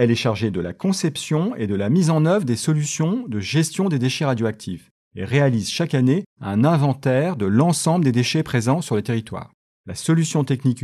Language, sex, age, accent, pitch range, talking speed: French, male, 40-59, French, 105-150 Hz, 200 wpm